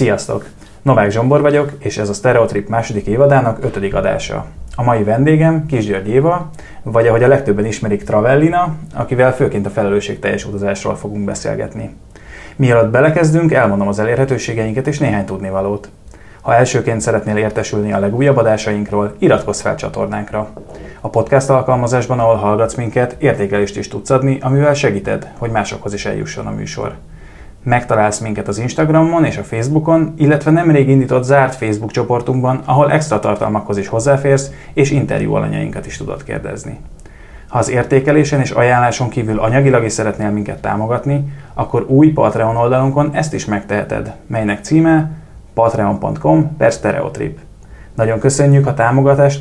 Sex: male